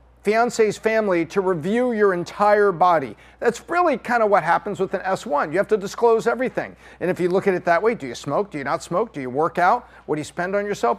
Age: 50-69